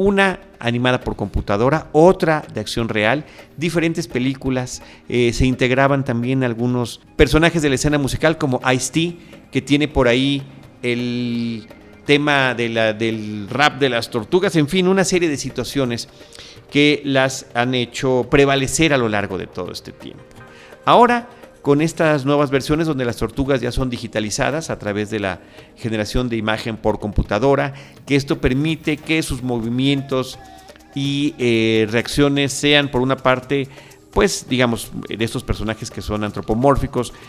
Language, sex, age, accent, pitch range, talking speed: Spanish, male, 40-59, Mexican, 115-145 Hz, 150 wpm